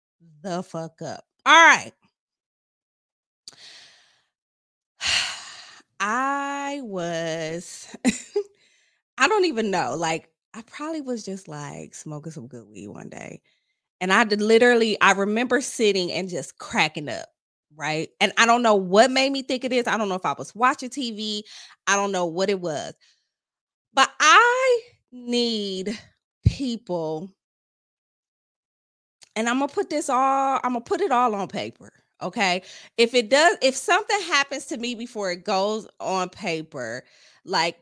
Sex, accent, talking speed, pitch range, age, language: female, American, 150 wpm, 180-270 Hz, 20-39, English